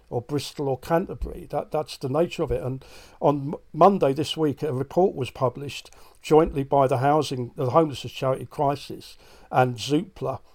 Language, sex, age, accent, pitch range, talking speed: English, male, 50-69, British, 130-155 Hz, 170 wpm